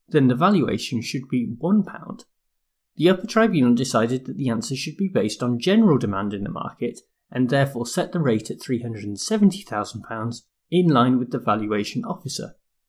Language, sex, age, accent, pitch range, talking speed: English, male, 30-49, British, 115-180 Hz, 165 wpm